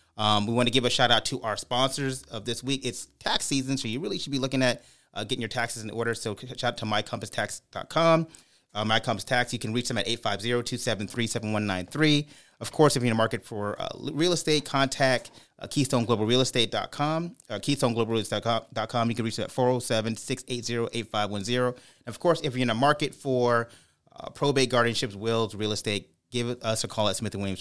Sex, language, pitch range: male, English, 105-135 Hz